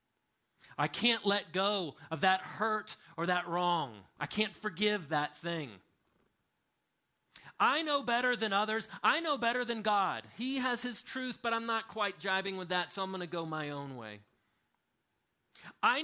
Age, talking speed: 30-49, 170 wpm